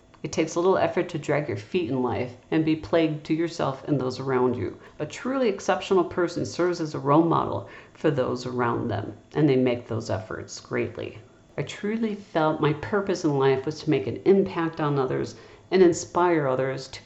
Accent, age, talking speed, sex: American, 50-69, 200 wpm, female